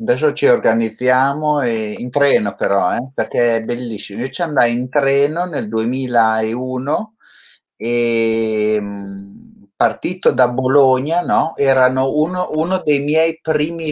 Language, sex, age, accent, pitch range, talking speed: Italian, male, 30-49, native, 115-150 Hz, 130 wpm